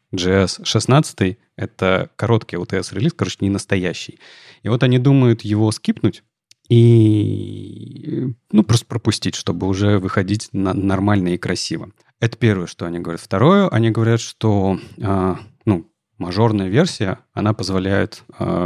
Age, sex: 30-49, male